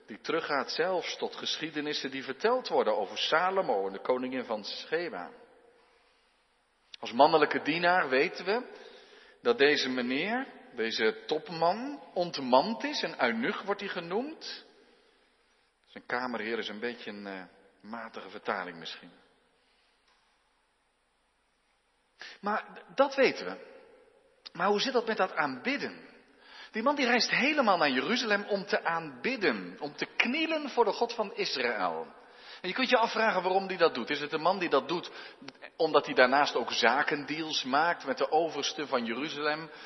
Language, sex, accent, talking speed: Dutch, male, Dutch, 150 wpm